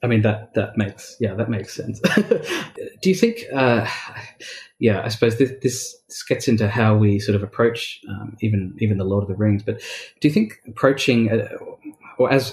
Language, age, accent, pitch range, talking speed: English, 20-39, Australian, 105-120 Hz, 195 wpm